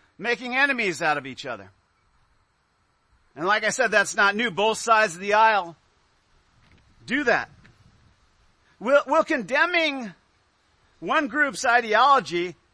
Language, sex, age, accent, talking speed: English, male, 50-69, American, 125 wpm